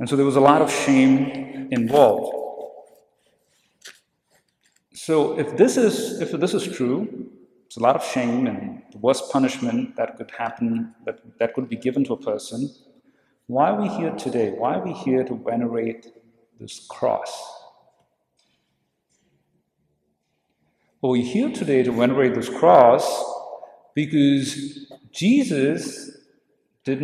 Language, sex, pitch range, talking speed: English, male, 125-155 Hz, 135 wpm